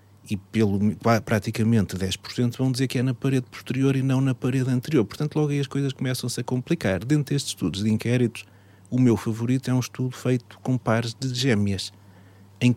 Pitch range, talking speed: 100-125 Hz, 195 wpm